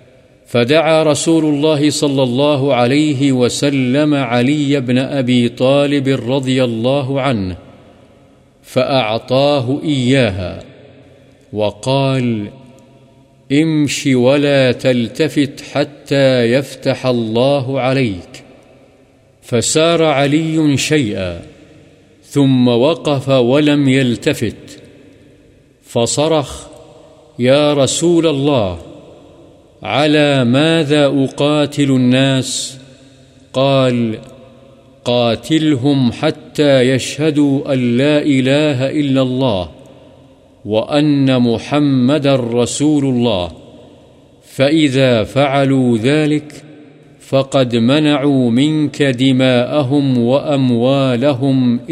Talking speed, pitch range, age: 70 wpm, 125-145 Hz, 50-69